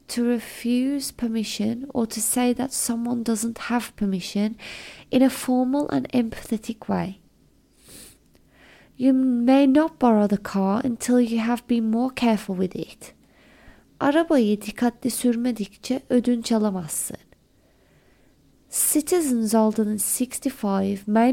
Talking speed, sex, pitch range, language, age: 115 wpm, female, 210-265 Hz, English, 30-49